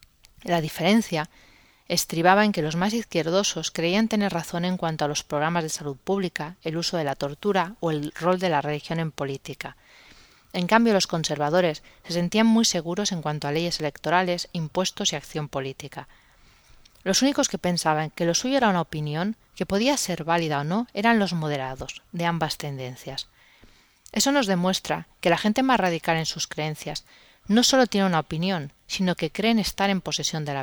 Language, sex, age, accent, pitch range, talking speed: Spanish, female, 30-49, Spanish, 150-190 Hz, 185 wpm